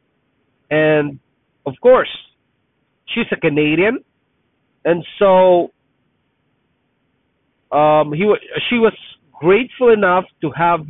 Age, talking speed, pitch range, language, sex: 50-69, 90 wpm, 130-180 Hz, English, male